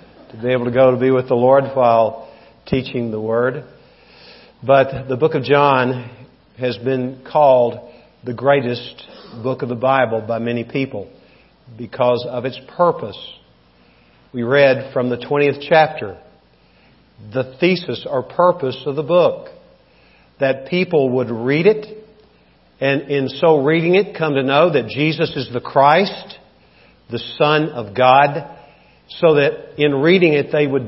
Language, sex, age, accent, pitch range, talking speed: English, male, 50-69, American, 125-150 Hz, 150 wpm